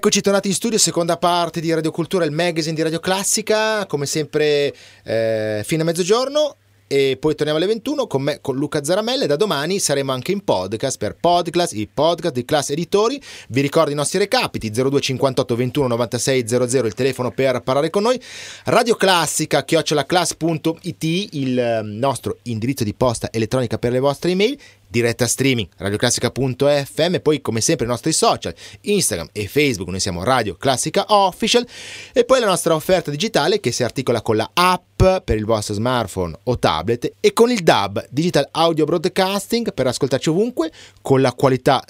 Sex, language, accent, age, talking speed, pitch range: male, Italian, native, 30-49, 175 wpm, 125-180 Hz